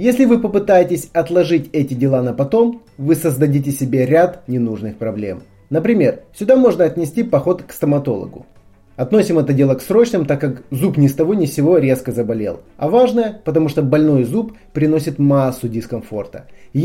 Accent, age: native, 30-49